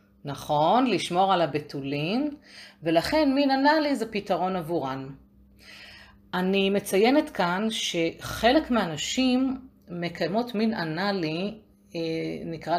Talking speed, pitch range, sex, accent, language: 90 wpm, 160-210 Hz, female, native, Hebrew